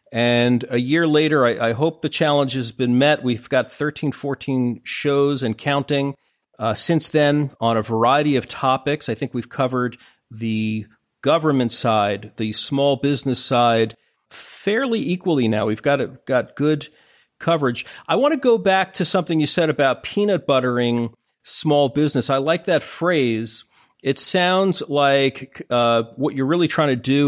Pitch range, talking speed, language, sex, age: 120-145 Hz, 165 wpm, English, male, 40-59